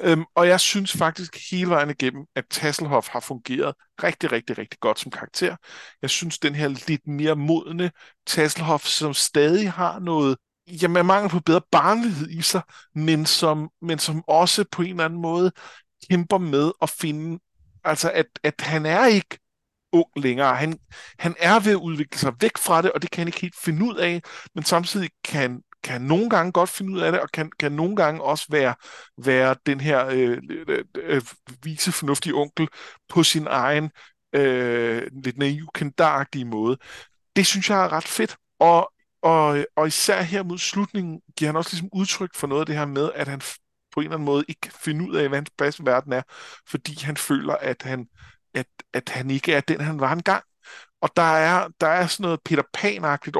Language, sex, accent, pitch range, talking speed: Danish, male, native, 145-175 Hz, 200 wpm